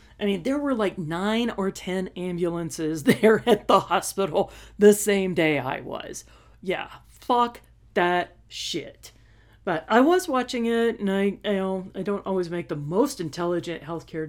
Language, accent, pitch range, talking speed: English, American, 160-230 Hz, 165 wpm